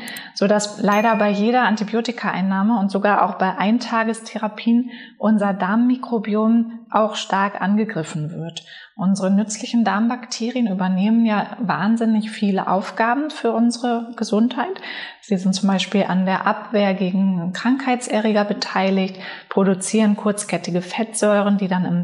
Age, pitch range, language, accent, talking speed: 20-39, 190-225 Hz, German, German, 120 wpm